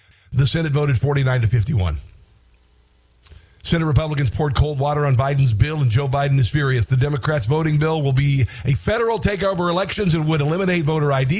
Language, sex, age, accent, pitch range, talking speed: English, male, 50-69, American, 130-170 Hz, 180 wpm